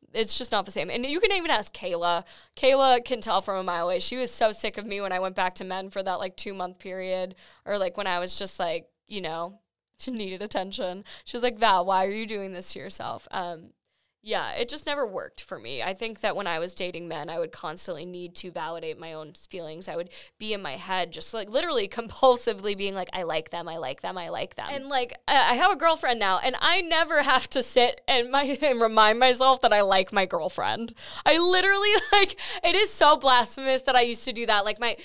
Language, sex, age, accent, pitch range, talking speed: English, female, 10-29, American, 190-280 Hz, 245 wpm